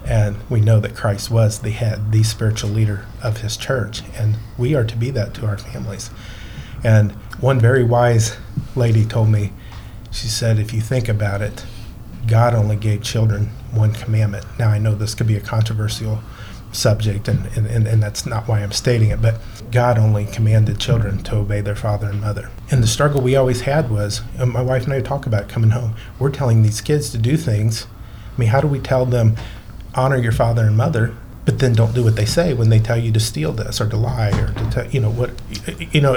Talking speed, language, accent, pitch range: 215 wpm, English, American, 110-125 Hz